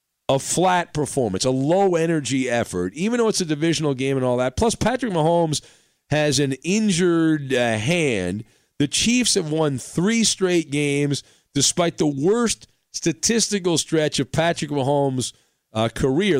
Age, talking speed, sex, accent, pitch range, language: 40-59, 145 wpm, male, American, 125-170 Hz, English